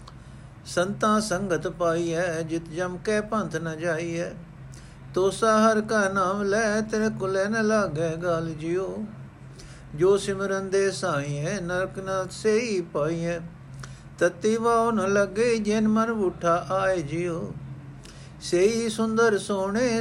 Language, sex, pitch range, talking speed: Punjabi, male, 165-210 Hz, 110 wpm